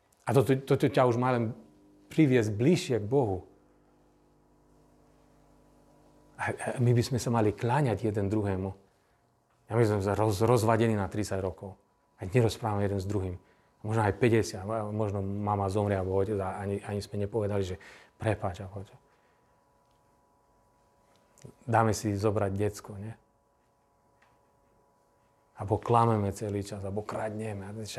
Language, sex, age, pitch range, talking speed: Slovak, male, 40-59, 105-135 Hz, 130 wpm